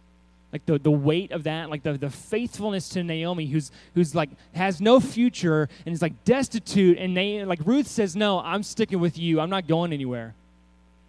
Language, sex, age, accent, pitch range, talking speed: English, male, 20-39, American, 125-190 Hz, 195 wpm